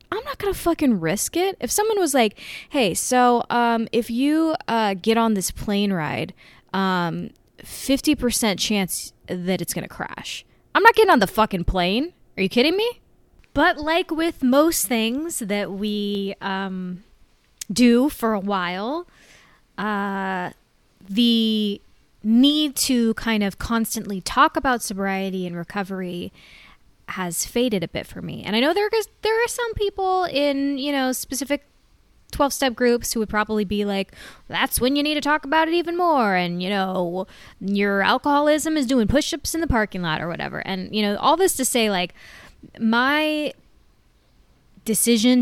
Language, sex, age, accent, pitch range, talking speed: English, female, 20-39, American, 195-275 Hz, 165 wpm